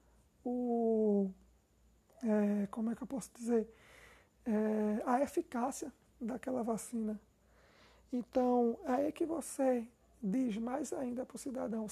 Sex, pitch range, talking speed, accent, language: male, 230-270 Hz, 105 wpm, Brazilian, Portuguese